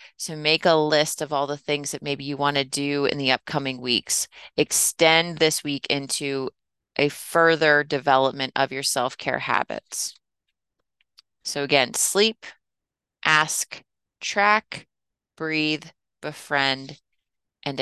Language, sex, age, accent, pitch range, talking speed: English, female, 30-49, American, 140-165 Hz, 125 wpm